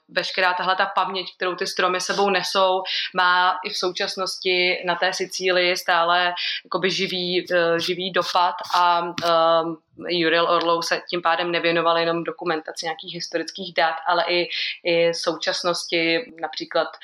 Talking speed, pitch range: 135 wpm, 165-185 Hz